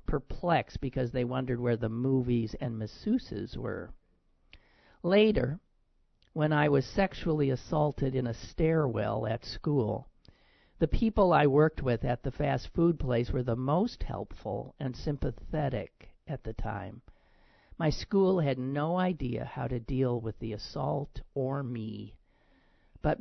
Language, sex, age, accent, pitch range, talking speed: English, male, 50-69, American, 110-145 Hz, 140 wpm